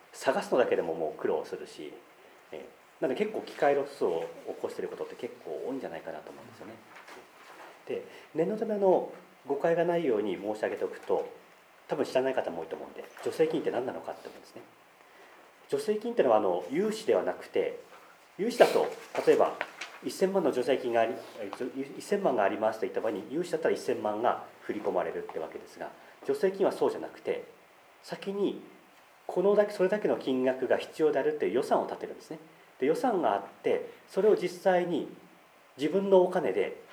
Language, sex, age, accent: Japanese, male, 40-59, native